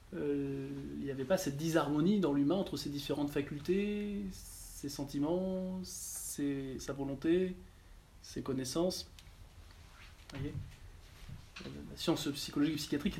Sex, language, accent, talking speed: male, French, French, 125 wpm